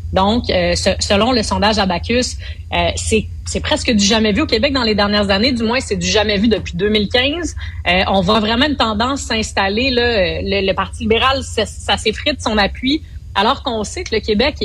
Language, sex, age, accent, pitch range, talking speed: French, female, 30-49, Canadian, 185-235 Hz, 205 wpm